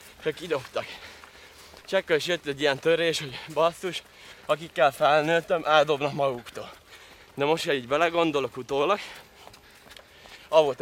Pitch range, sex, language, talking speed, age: 135-165 Hz, male, Hungarian, 115 wpm, 20-39